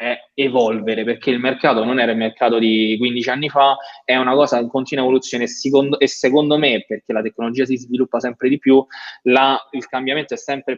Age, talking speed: 20-39, 190 wpm